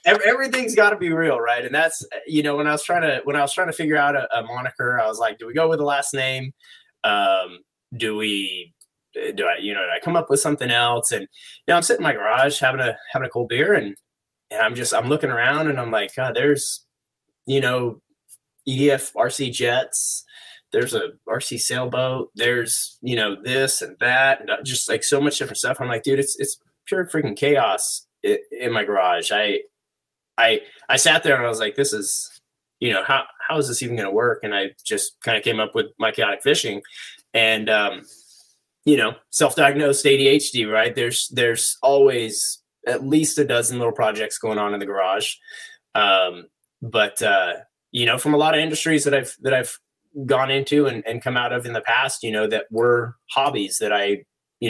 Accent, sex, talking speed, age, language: American, male, 215 wpm, 20-39, English